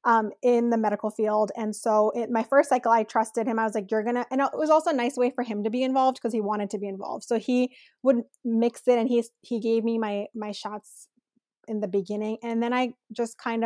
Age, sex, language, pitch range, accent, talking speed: 20-39, female, English, 220-260 Hz, American, 250 wpm